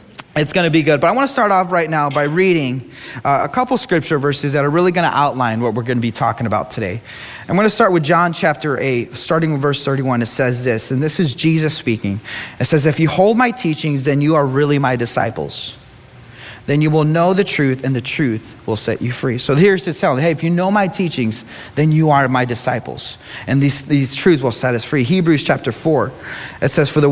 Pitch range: 130-170 Hz